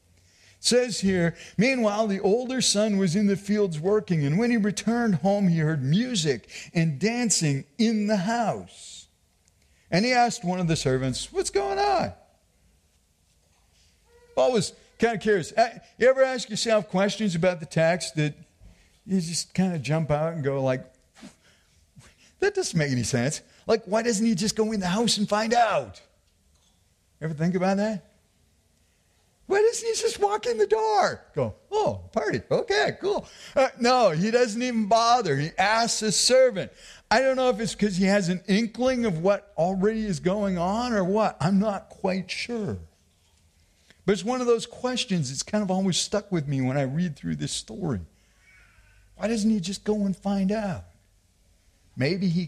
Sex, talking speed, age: male, 175 wpm, 50-69